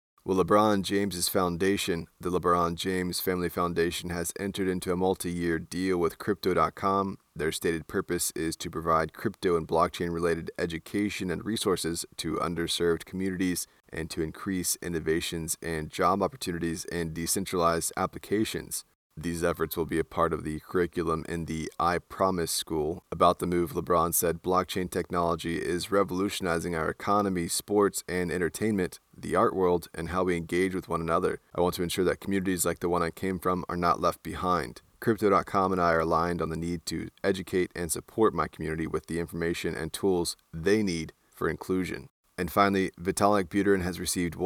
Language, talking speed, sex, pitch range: English, 170 wpm, male, 85-95 Hz